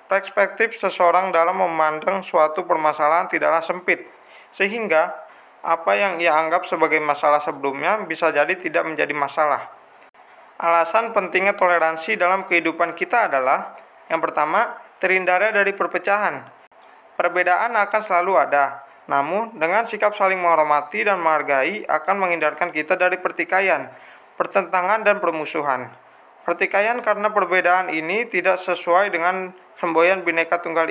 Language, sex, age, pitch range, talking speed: Indonesian, male, 20-39, 165-200 Hz, 120 wpm